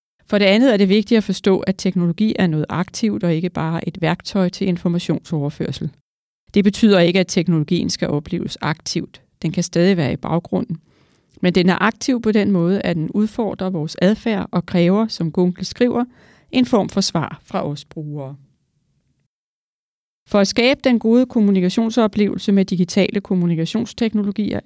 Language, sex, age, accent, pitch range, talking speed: Danish, female, 40-59, native, 165-205 Hz, 165 wpm